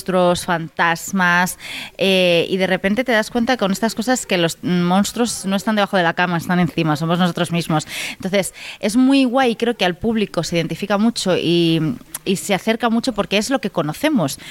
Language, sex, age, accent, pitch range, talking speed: Spanish, female, 20-39, Spanish, 170-220 Hz, 190 wpm